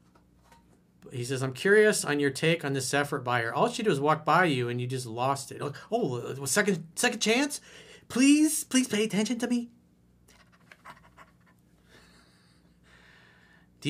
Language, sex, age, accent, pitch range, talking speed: English, male, 40-59, American, 120-185 Hz, 150 wpm